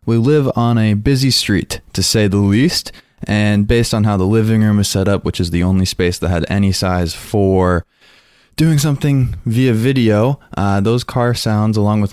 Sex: male